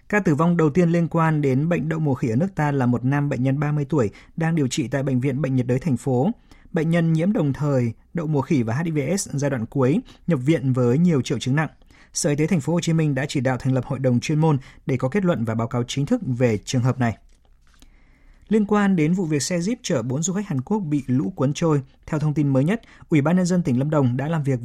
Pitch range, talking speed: 130-165 Hz, 280 wpm